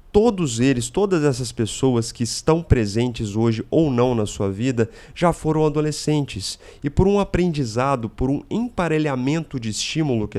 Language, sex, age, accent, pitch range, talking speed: Portuguese, male, 30-49, Brazilian, 115-150 Hz, 155 wpm